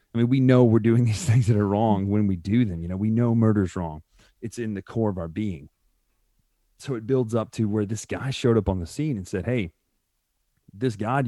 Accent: American